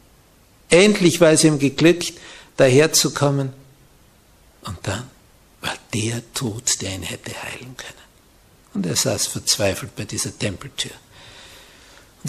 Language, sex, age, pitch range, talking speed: German, male, 60-79, 110-175 Hz, 115 wpm